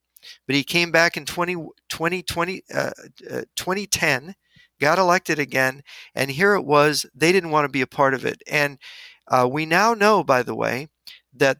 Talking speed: 185 wpm